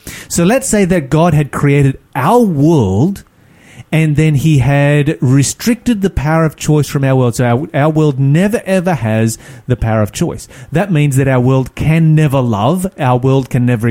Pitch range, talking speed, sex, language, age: 130-170 Hz, 190 wpm, male, English, 30-49